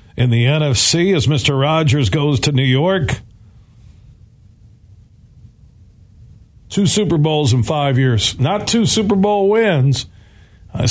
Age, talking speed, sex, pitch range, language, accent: 50-69, 120 wpm, male, 110-165 Hz, English, American